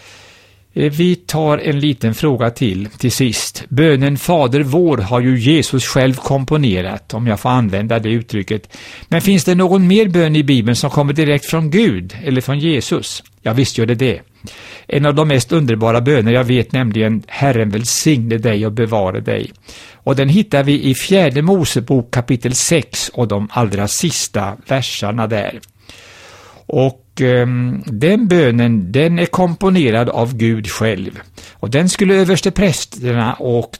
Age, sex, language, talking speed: 60-79, male, Swedish, 155 wpm